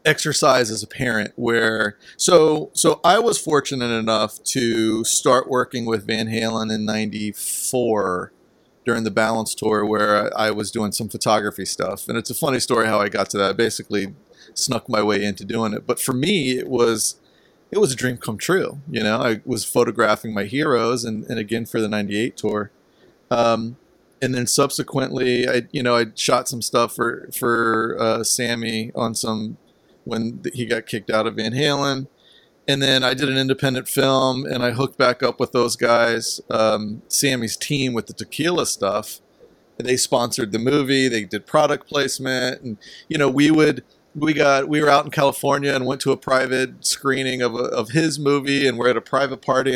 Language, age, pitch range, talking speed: English, 30-49, 110-135 Hz, 190 wpm